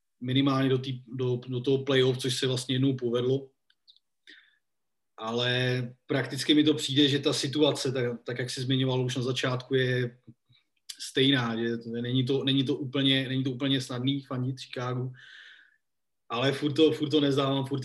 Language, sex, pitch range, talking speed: Slovak, male, 125-140 Hz, 170 wpm